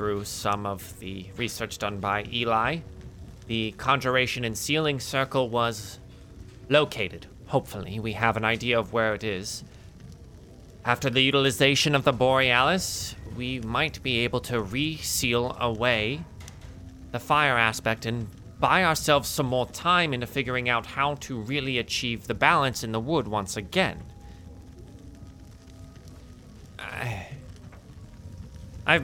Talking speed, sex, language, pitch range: 125 wpm, male, English, 95-130 Hz